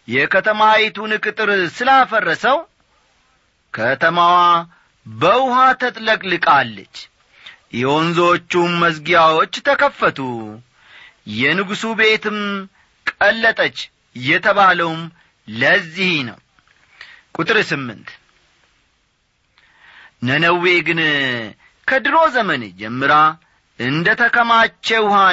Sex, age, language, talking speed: male, 40-59, Amharic, 55 wpm